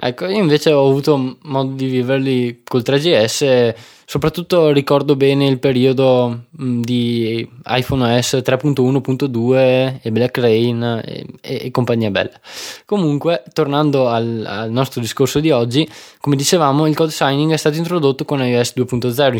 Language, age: Italian, 20-39